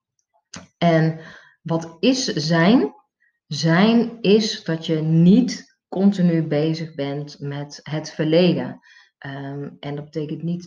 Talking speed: 105 wpm